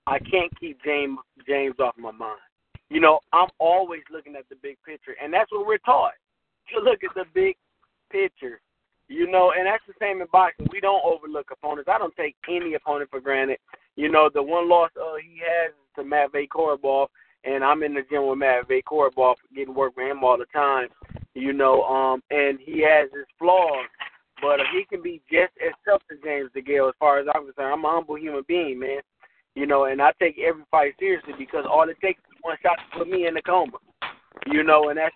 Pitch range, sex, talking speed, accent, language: 140-195 Hz, male, 215 wpm, American, English